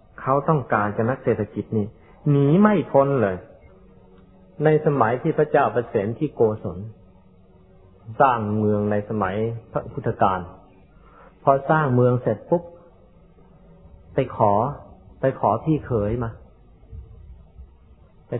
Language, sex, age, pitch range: Thai, male, 30-49, 100-125 Hz